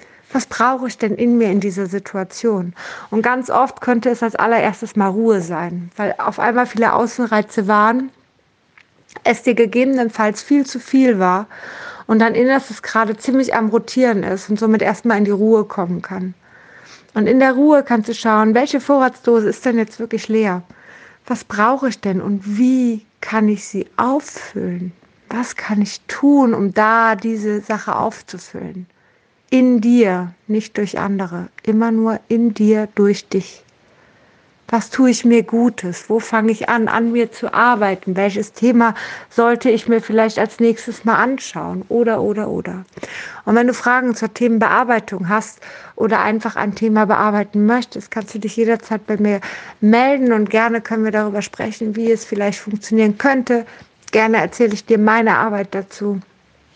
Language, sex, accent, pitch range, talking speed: German, female, German, 210-235 Hz, 165 wpm